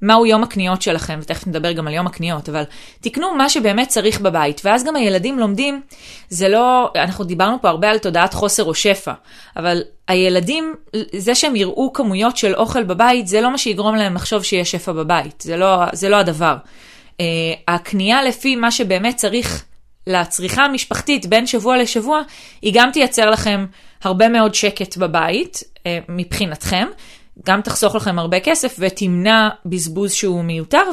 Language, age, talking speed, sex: Hebrew, 20-39, 160 wpm, female